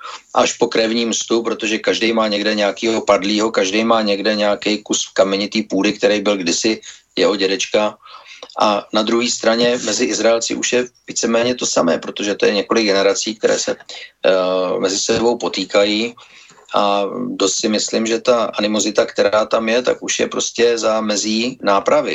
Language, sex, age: Slovak, male, 40-59